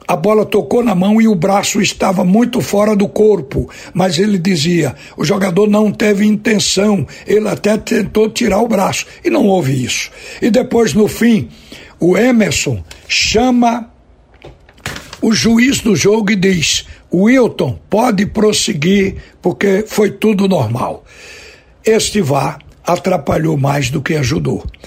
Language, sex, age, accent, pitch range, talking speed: Portuguese, male, 60-79, Brazilian, 170-210 Hz, 140 wpm